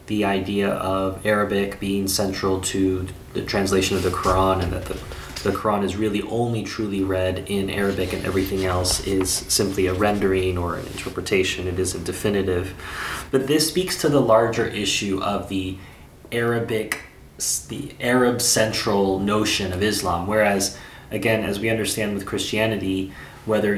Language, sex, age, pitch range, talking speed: English, male, 20-39, 95-105 Hz, 150 wpm